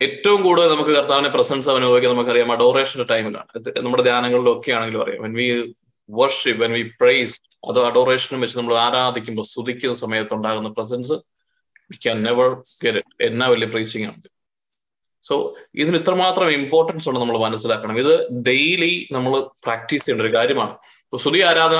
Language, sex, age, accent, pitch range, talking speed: Malayalam, male, 20-39, native, 120-155 Hz, 100 wpm